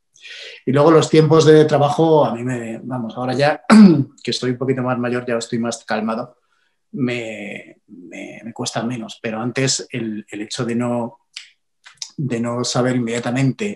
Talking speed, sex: 165 wpm, male